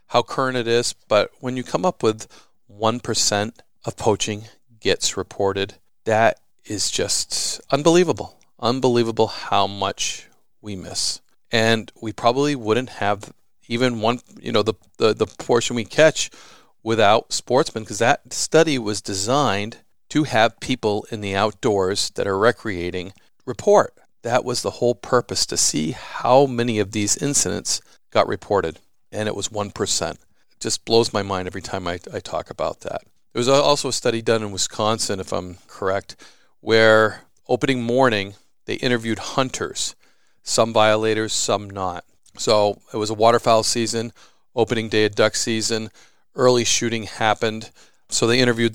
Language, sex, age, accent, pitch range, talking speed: English, male, 40-59, American, 105-120 Hz, 155 wpm